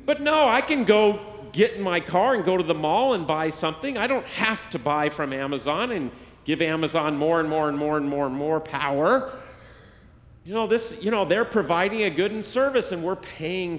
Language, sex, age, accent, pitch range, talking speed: English, male, 40-59, American, 145-230 Hz, 220 wpm